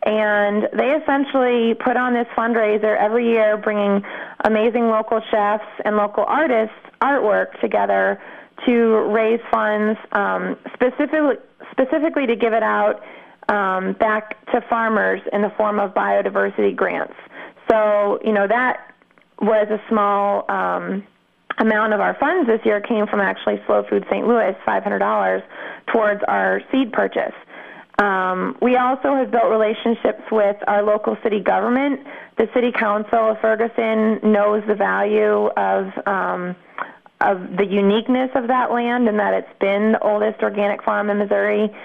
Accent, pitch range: American, 205-230 Hz